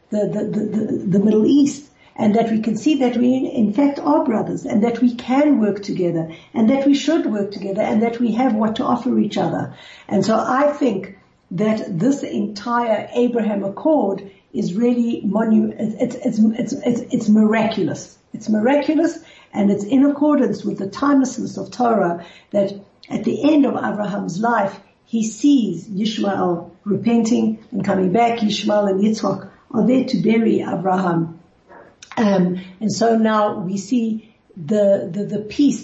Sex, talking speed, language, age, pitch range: female, 165 wpm, English, 60-79, 195-245 Hz